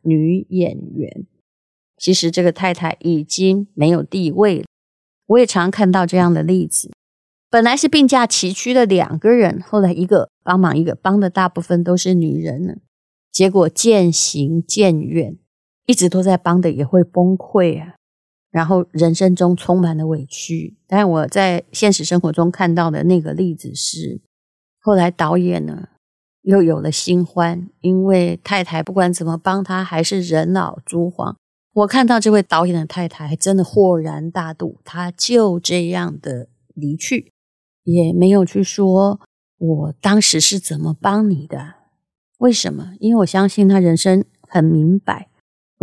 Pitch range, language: 165-195 Hz, Chinese